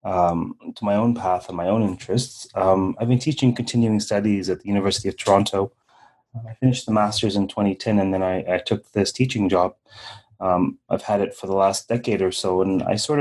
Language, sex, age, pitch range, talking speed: English, male, 30-49, 95-115 Hz, 215 wpm